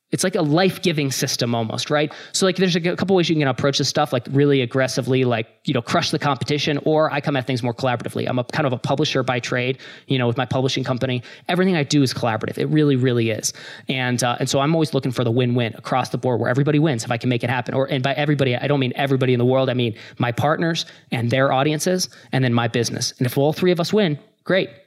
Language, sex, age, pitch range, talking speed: English, male, 20-39, 130-155 Hz, 265 wpm